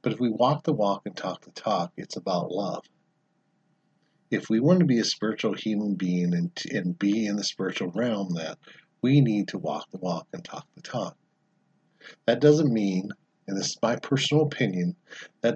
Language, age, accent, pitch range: English, 50-69, American, 95-135 Hz